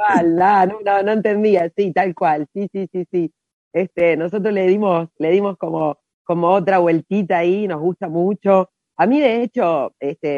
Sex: female